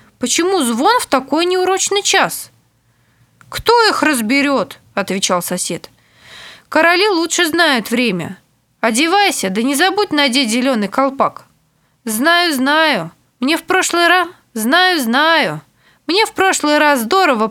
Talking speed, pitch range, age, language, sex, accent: 120 wpm, 210-340 Hz, 20-39, Russian, female, native